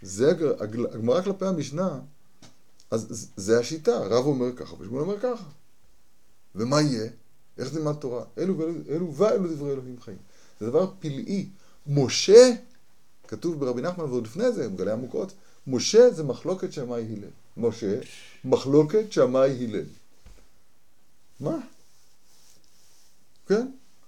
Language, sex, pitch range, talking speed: Hebrew, male, 120-185 Hz, 110 wpm